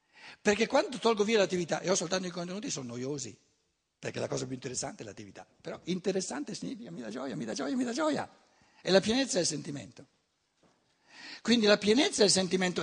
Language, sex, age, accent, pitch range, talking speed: Italian, male, 60-79, native, 145-215 Hz, 195 wpm